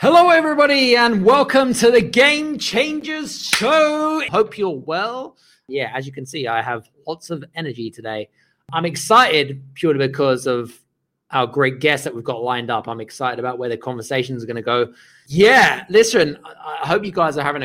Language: English